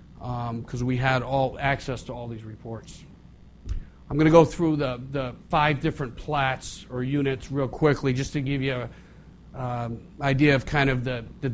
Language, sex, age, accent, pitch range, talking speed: English, male, 40-59, American, 125-145 Hz, 185 wpm